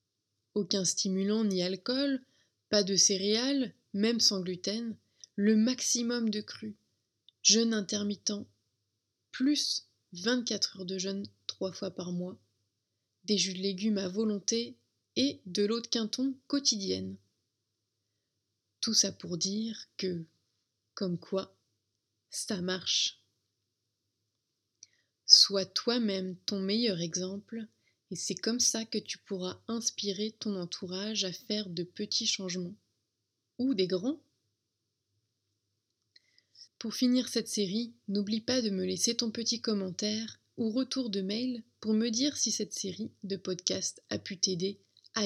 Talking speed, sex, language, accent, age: 130 wpm, female, French, French, 20-39